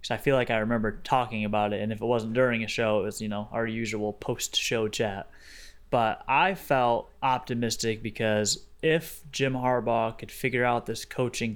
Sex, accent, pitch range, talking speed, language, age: male, American, 110-120 Hz, 190 wpm, English, 20-39